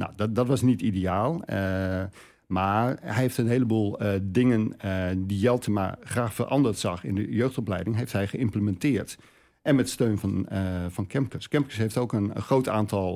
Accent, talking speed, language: Dutch, 185 wpm, Dutch